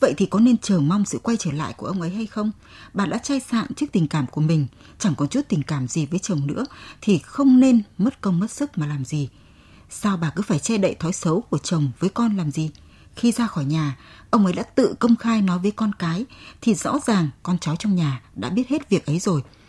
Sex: female